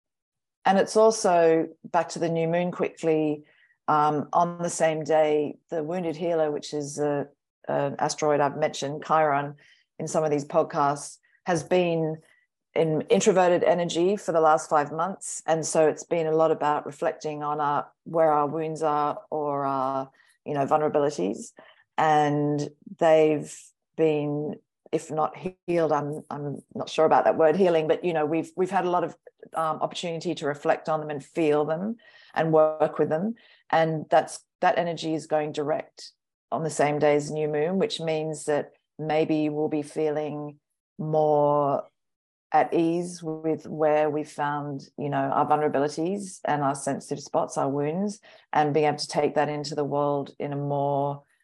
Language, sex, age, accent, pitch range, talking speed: English, female, 40-59, Australian, 145-165 Hz, 170 wpm